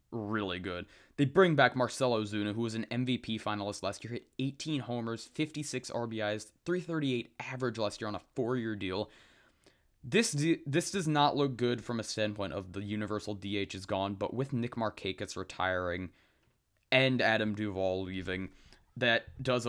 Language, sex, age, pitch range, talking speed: English, male, 20-39, 105-170 Hz, 165 wpm